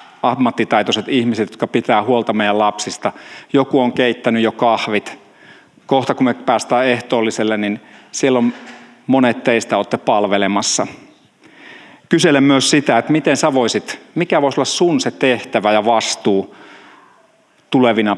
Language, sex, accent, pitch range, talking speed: Finnish, male, native, 115-140 Hz, 130 wpm